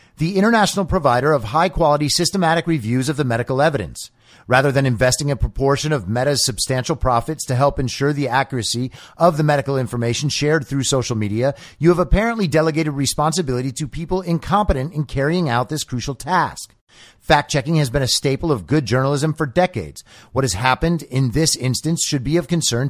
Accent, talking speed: American, 175 wpm